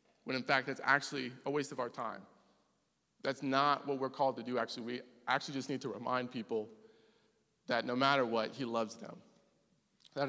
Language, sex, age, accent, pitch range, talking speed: English, male, 20-39, American, 115-140 Hz, 190 wpm